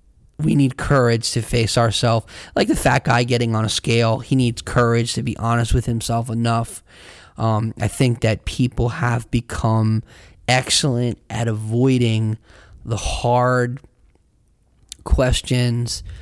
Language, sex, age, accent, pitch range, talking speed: English, male, 20-39, American, 110-120 Hz, 135 wpm